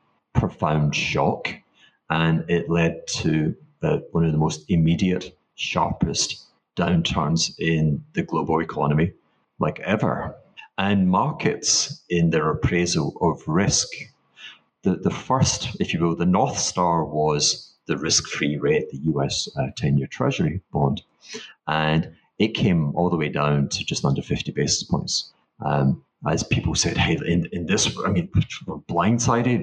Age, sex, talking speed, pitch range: 30-49, male, 140 wpm, 80-95 Hz